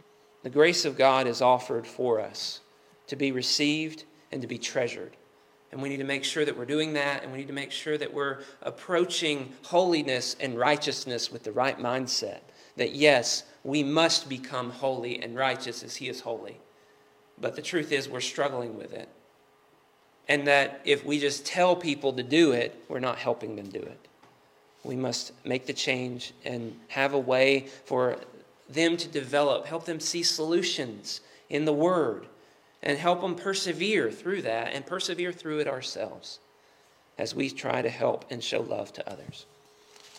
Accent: American